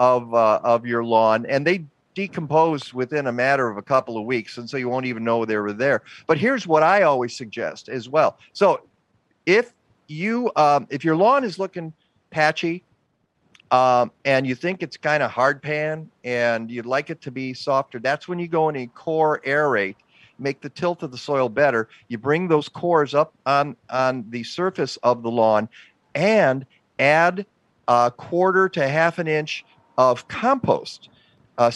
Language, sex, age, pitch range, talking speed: English, male, 50-69, 125-160 Hz, 185 wpm